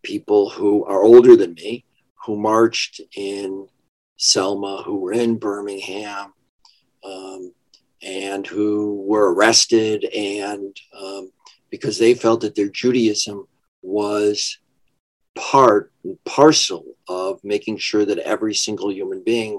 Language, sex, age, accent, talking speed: English, male, 50-69, American, 115 wpm